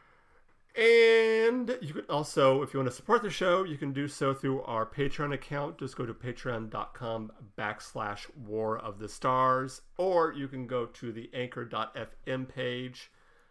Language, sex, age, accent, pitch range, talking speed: English, male, 40-59, American, 115-135 Hz, 160 wpm